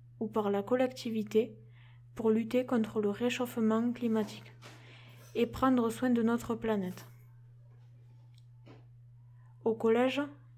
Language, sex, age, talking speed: French, female, 20-39, 100 wpm